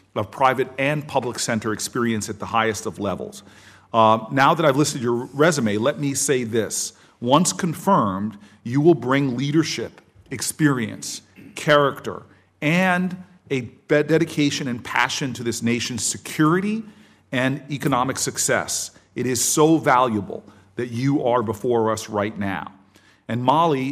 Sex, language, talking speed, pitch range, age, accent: male, English, 140 wpm, 110-140 Hz, 40-59, American